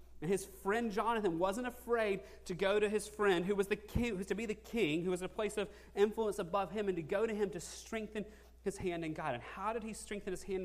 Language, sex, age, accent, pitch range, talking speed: English, male, 30-49, American, 165-205 Hz, 255 wpm